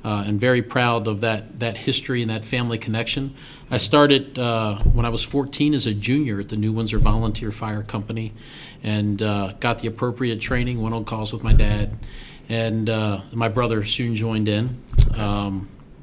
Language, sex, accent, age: English, male, American, 40-59